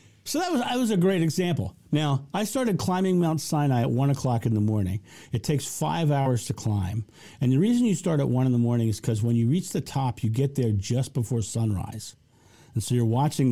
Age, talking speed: 50-69, 235 wpm